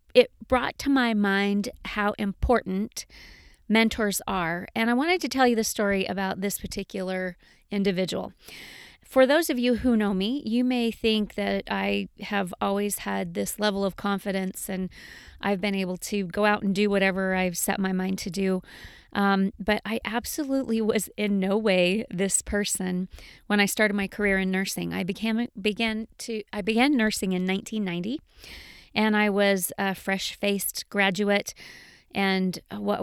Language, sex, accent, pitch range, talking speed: English, female, American, 190-220 Hz, 165 wpm